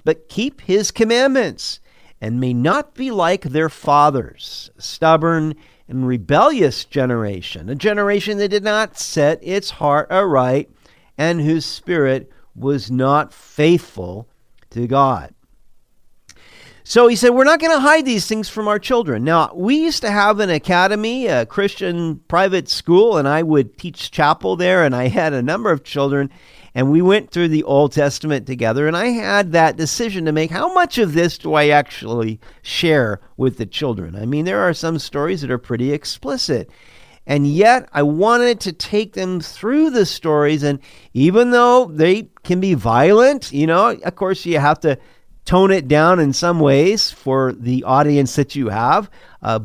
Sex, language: male, English